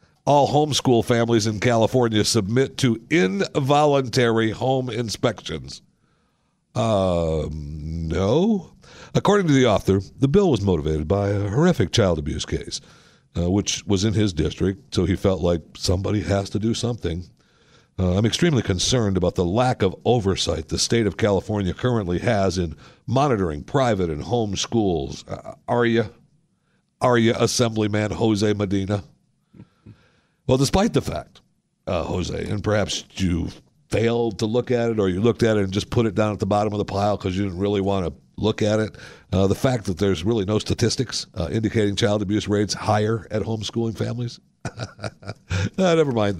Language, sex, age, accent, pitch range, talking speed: English, male, 60-79, American, 95-125 Hz, 165 wpm